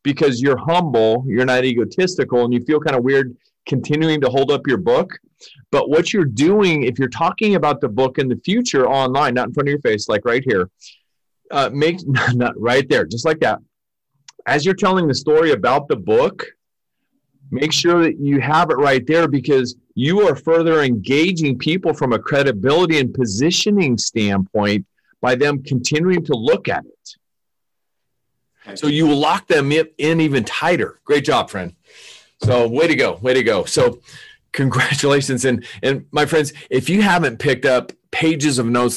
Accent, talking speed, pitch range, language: American, 180 wpm, 125-155 Hz, English